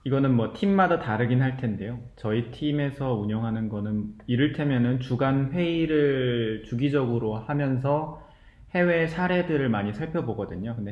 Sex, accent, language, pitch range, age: male, native, Korean, 115-145 Hz, 20-39